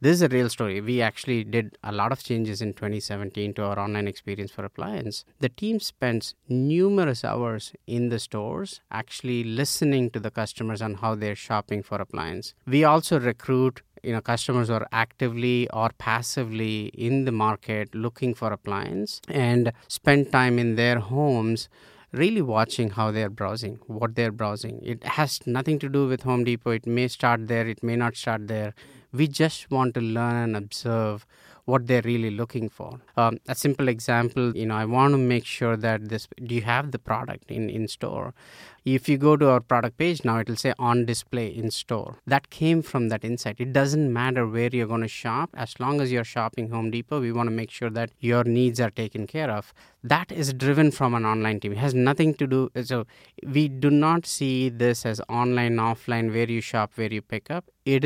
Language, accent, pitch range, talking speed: English, Indian, 110-130 Hz, 200 wpm